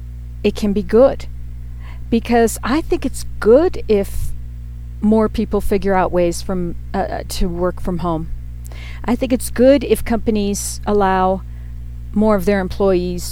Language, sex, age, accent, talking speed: English, female, 50-69, American, 145 wpm